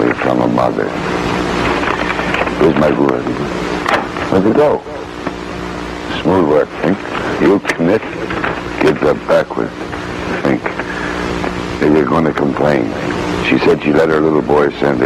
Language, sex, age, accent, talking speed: English, male, 60-79, American, 125 wpm